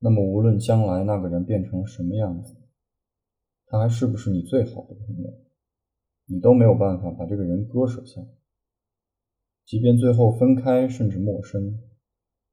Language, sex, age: Chinese, male, 20-39